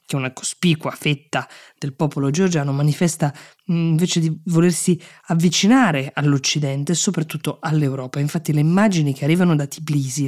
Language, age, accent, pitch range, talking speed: Italian, 20-39, native, 145-180 Hz, 135 wpm